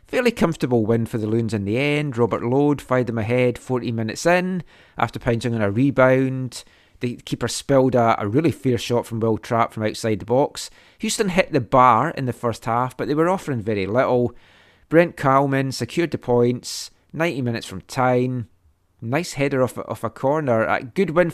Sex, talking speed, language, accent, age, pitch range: male, 195 wpm, English, British, 30-49, 115-145 Hz